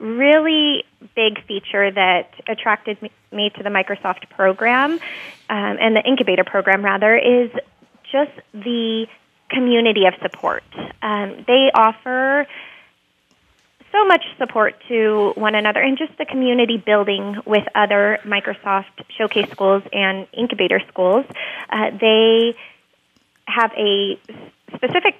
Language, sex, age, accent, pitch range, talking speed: English, female, 20-39, American, 205-255 Hz, 115 wpm